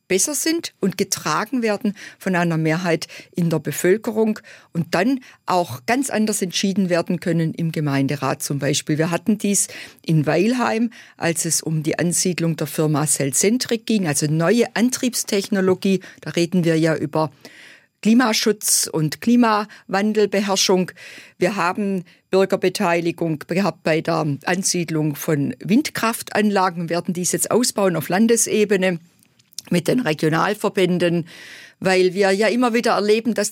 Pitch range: 160-210 Hz